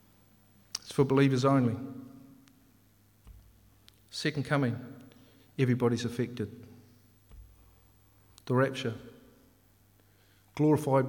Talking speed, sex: 60 wpm, male